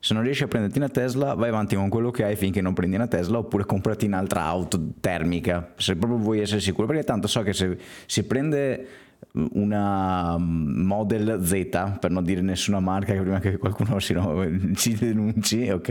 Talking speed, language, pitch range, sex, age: 190 wpm, Italian, 85-105 Hz, male, 30-49